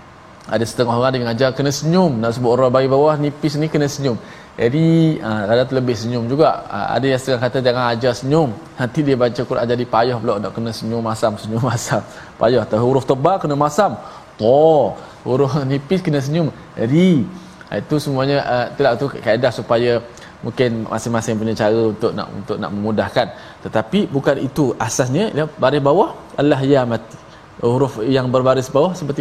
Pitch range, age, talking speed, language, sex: 115-150 Hz, 20-39, 175 wpm, Malayalam, male